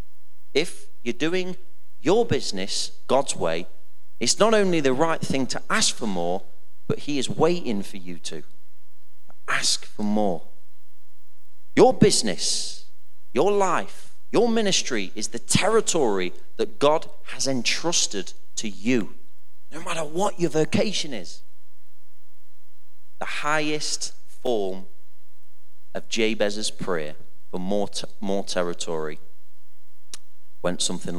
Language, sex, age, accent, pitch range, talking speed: English, male, 30-49, British, 100-160 Hz, 115 wpm